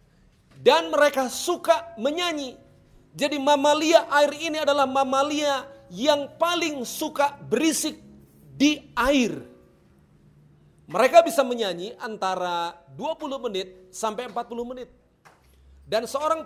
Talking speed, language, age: 100 wpm, Indonesian, 40-59